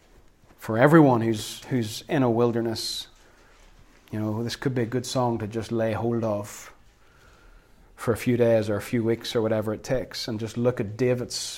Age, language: 30-49, English